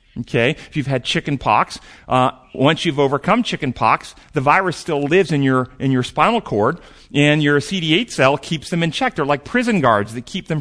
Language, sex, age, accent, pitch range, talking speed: English, male, 40-59, American, 130-180 Hz, 200 wpm